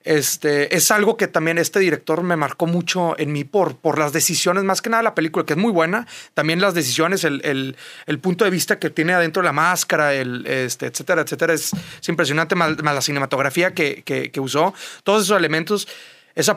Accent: Mexican